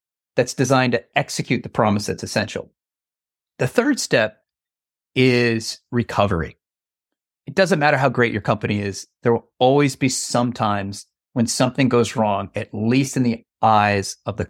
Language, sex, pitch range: English, male, 110-150 Hz